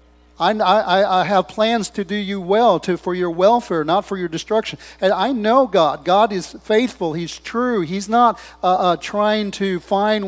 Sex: male